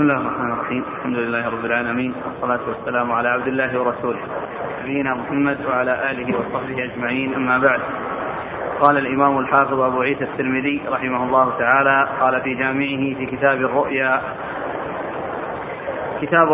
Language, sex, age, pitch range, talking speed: Arabic, male, 20-39, 140-160 Hz, 125 wpm